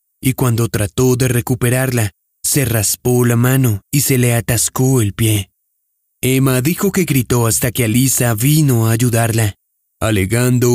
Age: 30-49